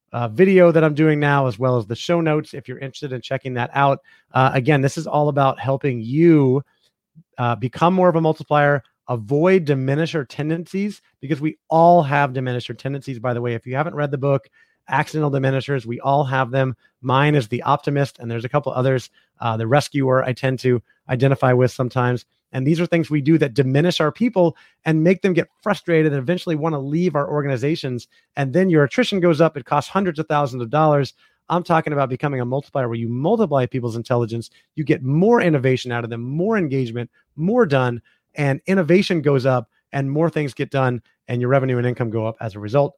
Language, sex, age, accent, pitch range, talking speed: English, male, 30-49, American, 125-155 Hz, 210 wpm